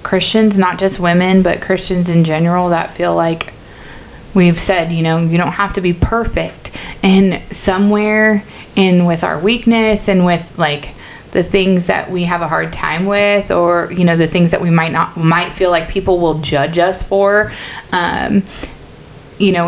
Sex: female